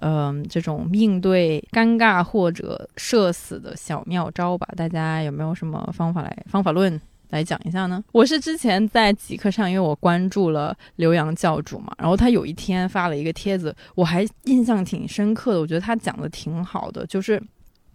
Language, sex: Chinese, female